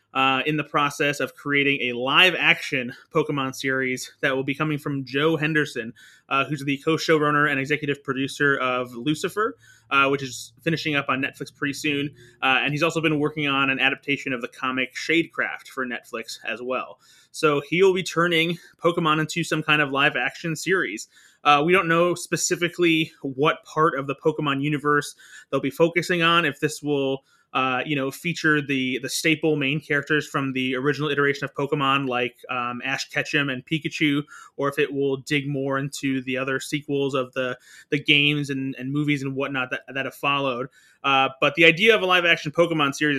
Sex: male